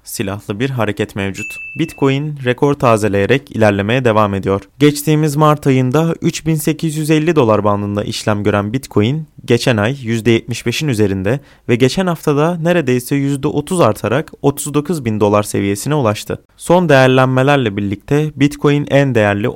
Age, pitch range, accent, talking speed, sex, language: 30-49, 105-145 Hz, native, 120 wpm, male, Turkish